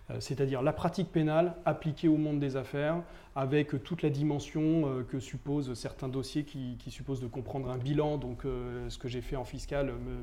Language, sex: French, male